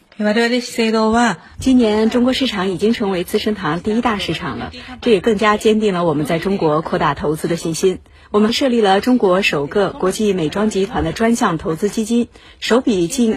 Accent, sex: native, female